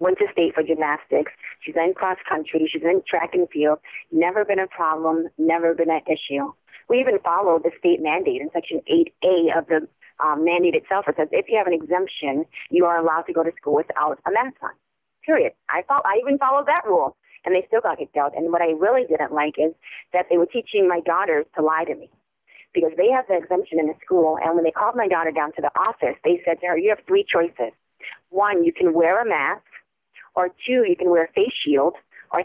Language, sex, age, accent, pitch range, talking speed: English, female, 40-59, American, 160-220 Hz, 230 wpm